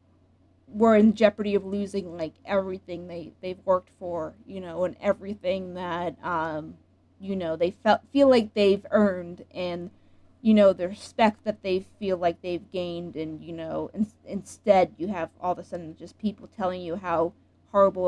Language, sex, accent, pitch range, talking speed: English, female, American, 175-215 Hz, 175 wpm